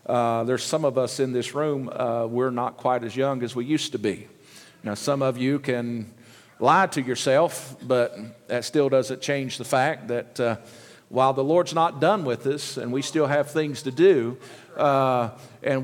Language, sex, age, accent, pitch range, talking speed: English, male, 50-69, American, 130-155 Hz, 195 wpm